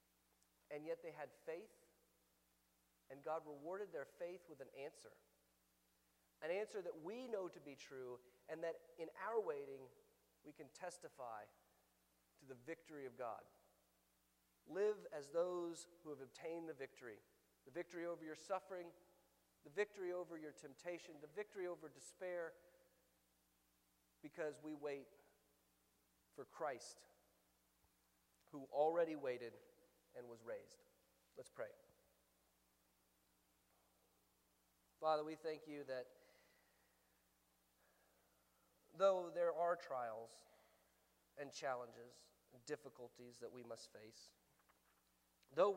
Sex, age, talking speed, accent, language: male, 40-59, 115 wpm, American, English